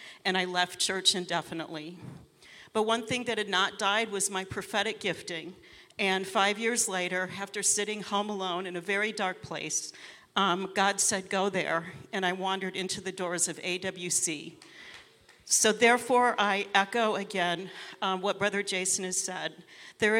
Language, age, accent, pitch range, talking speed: English, 50-69, American, 185-215 Hz, 160 wpm